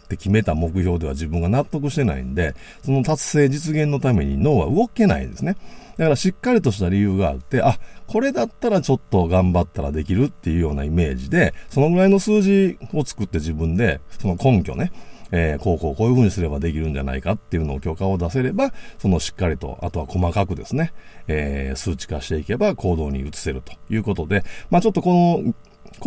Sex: male